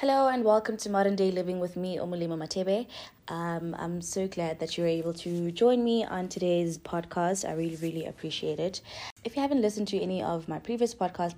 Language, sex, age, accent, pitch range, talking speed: English, female, 20-39, South African, 160-185 Hz, 210 wpm